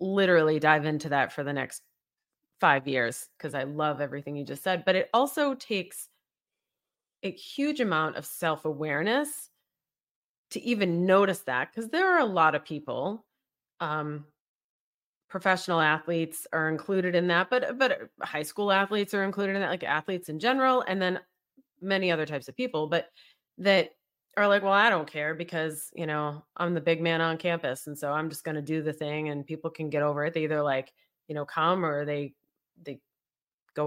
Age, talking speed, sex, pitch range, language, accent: 30-49, 185 wpm, female, 150-200 Hz, English, American